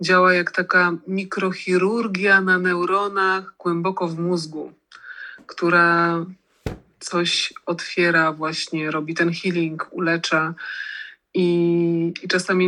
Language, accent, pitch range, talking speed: Polish, native, 170-185 Hz, 95 wpm